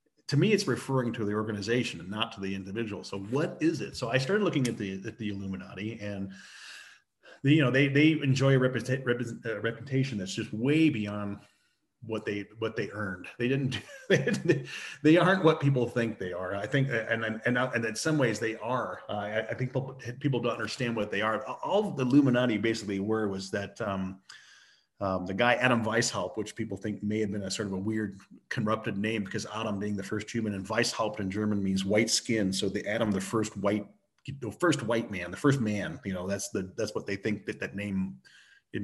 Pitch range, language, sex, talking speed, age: 105-135 Hz, English, male, 220 wpm, 40-59